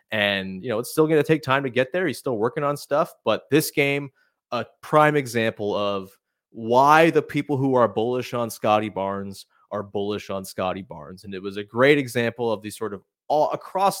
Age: 30-49